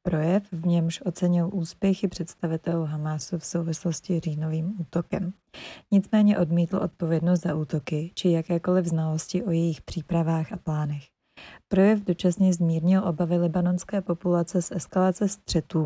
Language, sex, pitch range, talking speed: Czech, female, 165-185 Hz, 130 wpm